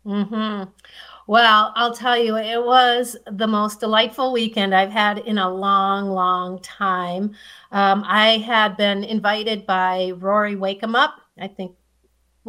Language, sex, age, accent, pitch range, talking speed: English, female, 40-59, American, 195-230 Hz, 150 wpm